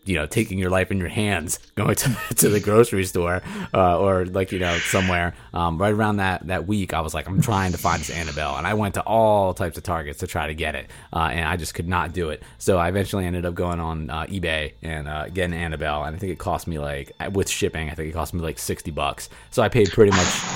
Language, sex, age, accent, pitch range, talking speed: English, male, 20-39, American, 85-100 Hz, 265 wpm